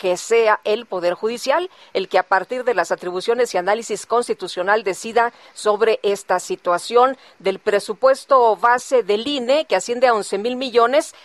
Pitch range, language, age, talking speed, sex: 195-260 Hz, Spanish, 40-59, 160 wpm, female